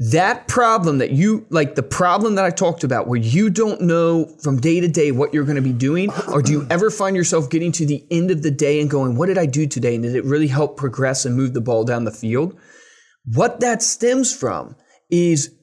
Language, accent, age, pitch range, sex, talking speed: English, American, 20-39, 140-190 Hz, male, 240 wpm